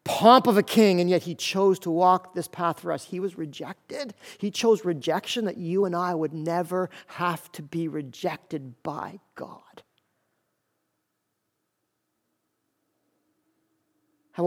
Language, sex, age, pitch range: English, male, 50-69, 165-200 Hz